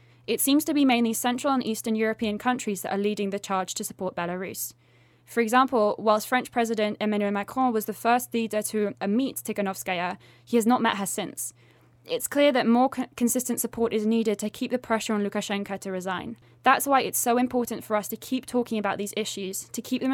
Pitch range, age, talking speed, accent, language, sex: 200-245 Hz, 10-29, 210 wpm, British, English, female